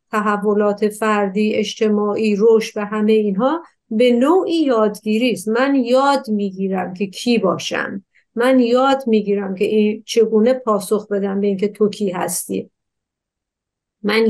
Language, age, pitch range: Persian, 50-69, 205-245 Hz